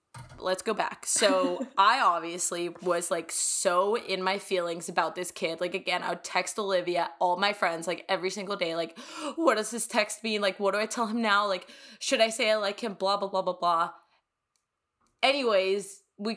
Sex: female